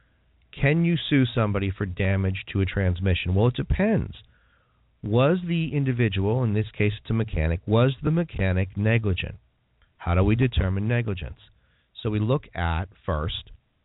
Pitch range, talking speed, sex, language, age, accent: 95-130 Hz, 150 wpm, male, English, 40-59, American